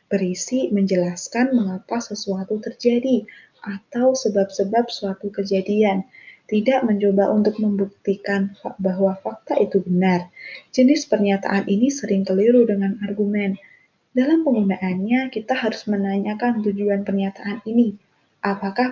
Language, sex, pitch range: Indonesian, female, 195-240 Hz